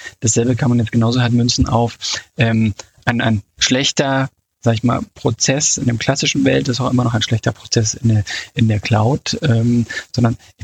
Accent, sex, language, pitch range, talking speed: German, male, German, 115-130 Hz, 195 wpm